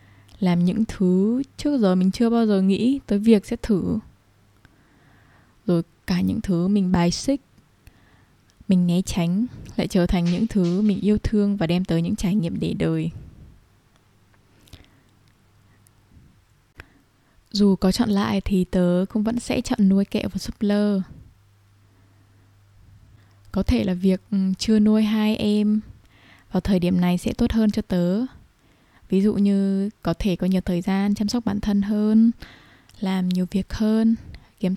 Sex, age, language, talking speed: female, 20-39, Vietnamese, 155 wpm